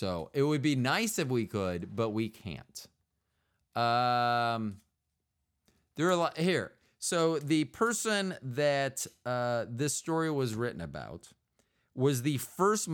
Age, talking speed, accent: 40-59, 140 wpm, American